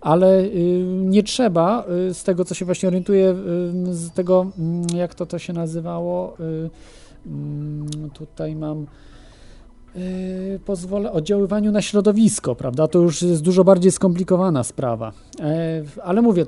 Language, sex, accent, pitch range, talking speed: Polish, male, native, 150-185 Hz, 115 wpm